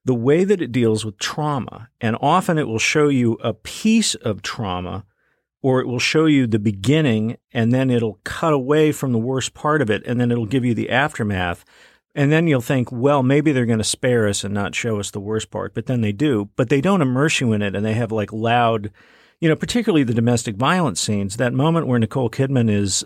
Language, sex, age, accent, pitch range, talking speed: English, male, 50-69, American, 105-135 Hz, 235 wpm